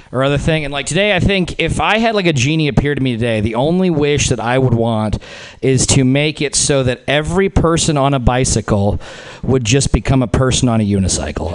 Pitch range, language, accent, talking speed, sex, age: 125-180 Hz, English, American, 230 wpm, male, 40-59